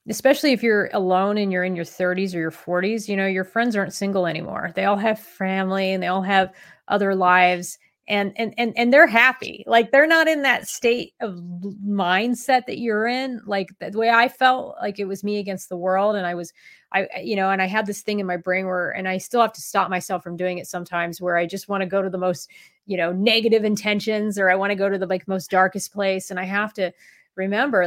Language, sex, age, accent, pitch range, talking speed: English, female, 30-49, American, 185-215 Hz, 245 wpm